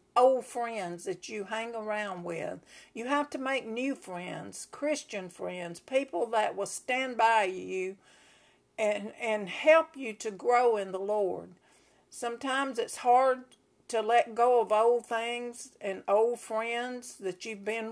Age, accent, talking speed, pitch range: 60-79, American, 150 wpm, 205-265 Hz